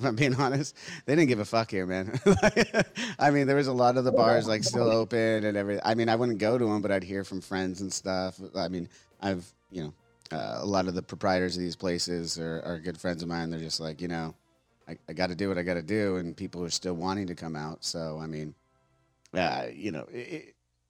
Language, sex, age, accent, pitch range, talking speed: English, male, 30-49, American, 80-110 Hz, 250 wpm